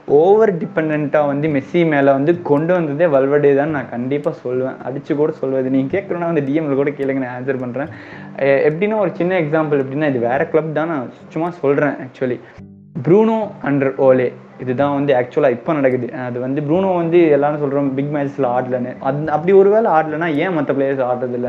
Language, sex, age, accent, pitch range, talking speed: Tamil, male, 20-39, native, 135-165 Hz, 180 wpm